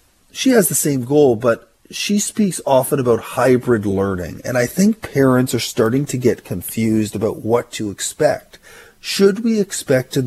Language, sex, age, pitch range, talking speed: English, male, 40-59, 115-145 Hz, 170 wpm